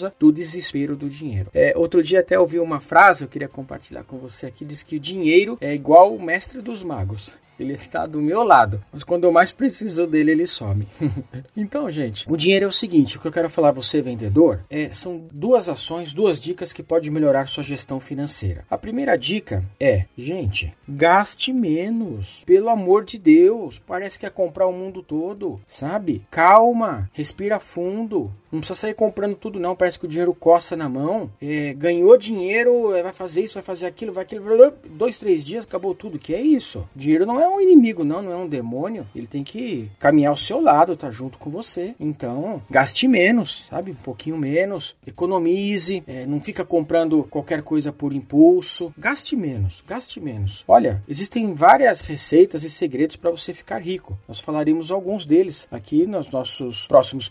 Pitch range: 140-200 Hz